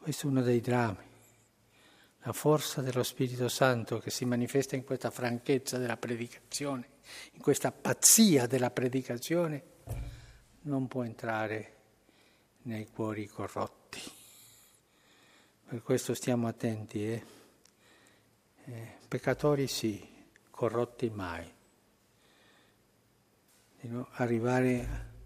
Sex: male